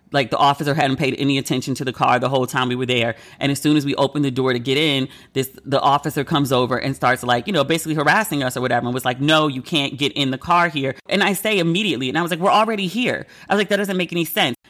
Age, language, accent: 30-49, English, American